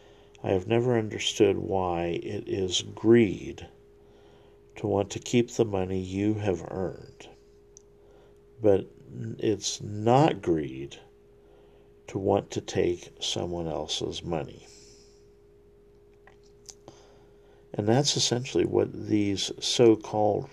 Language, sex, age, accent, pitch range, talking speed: English, male, 50-69, American, 85-105 Hz, 100 wpm